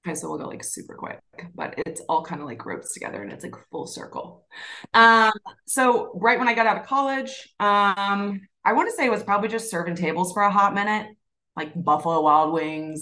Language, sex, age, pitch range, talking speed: English, female, 20-39, 160-205 Hz, 220 wpm